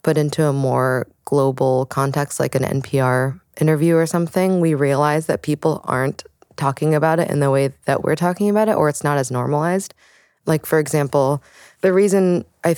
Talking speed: 185 wpm